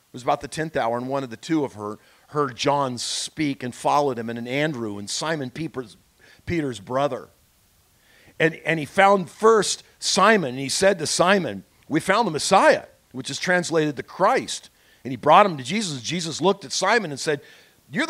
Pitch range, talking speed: 145-210 Hz, 200 wpm